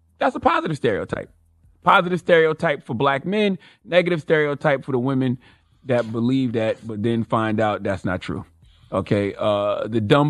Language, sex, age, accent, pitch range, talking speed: English, male, 30-49, American, 105-145 Hz, 165 wpm